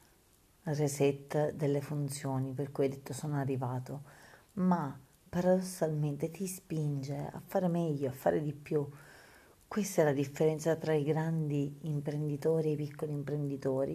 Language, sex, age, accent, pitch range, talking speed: Italian, female, 40-59, native, 135-155 Hz, 140 wpm